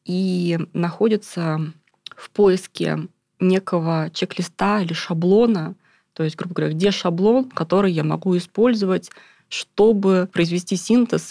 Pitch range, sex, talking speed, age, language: 165-195 Hz, female, 110 wpm, 20-39, Russian